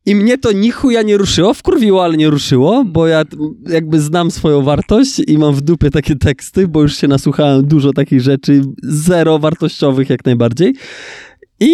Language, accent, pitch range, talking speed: Polish, native, 140-190 Hz, 180 wpm